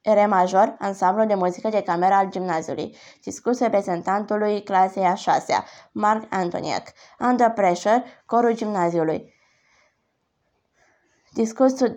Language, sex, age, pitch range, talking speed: Romanian, female, 20-39, 185-235 Hz, 105 wpm